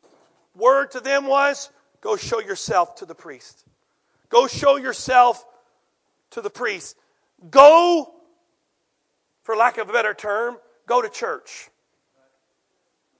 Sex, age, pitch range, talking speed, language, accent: male, 50-69, 255-330 Hz, 120 wpm, English, American